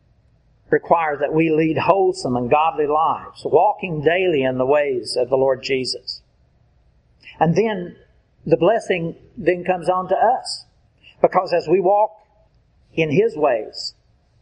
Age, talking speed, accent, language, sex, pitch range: 60-79, 135 wpm, American, English, male, 130-185 Hz